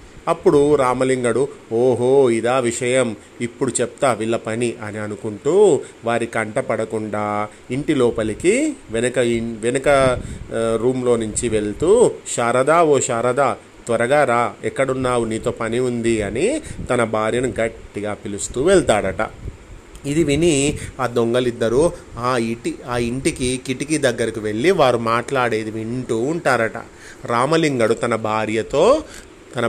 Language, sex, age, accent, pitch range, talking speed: Telugu, male, 30-49, native, 115-140 Hz, 110 wpm